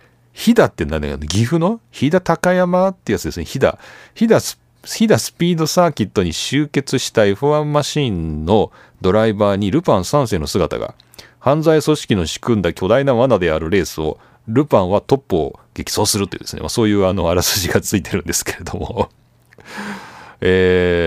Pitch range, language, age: 85-135 Hz, Japanese, 40-59